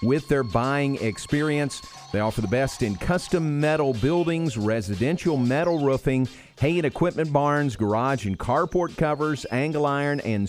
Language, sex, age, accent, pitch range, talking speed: English, male, 50-69, American, 110-150 Hz, 150 wpm